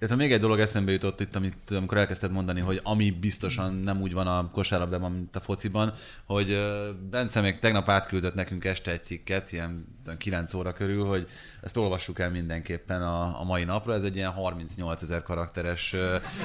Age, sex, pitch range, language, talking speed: 20-39, male, 90-110 Hz, Hungarian, 180 wpm